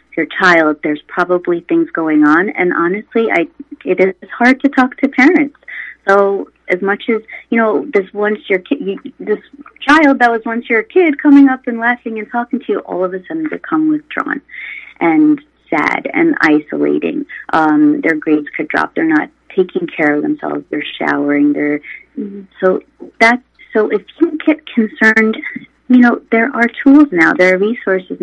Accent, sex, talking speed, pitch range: American, female, 180 wpm, 180-280 Hz